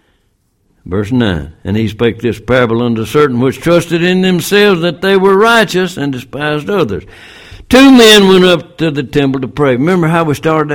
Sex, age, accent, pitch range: male, 60-79, American, 95-140 Hz